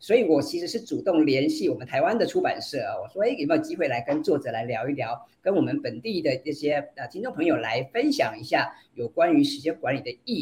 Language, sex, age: Chinese, female, 50-69